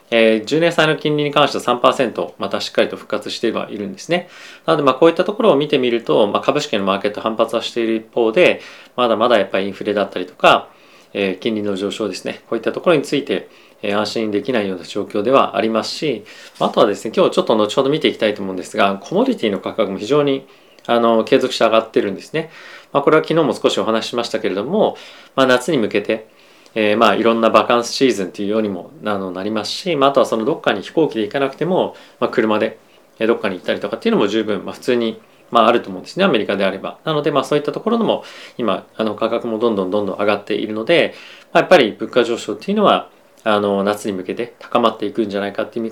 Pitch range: 105-135 Hz